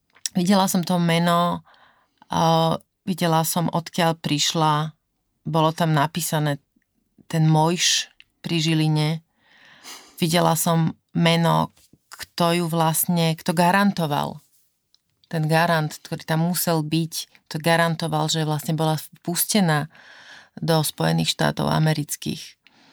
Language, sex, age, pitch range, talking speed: Slovak, female, 30-49, 155-175 Hz, 100 wpm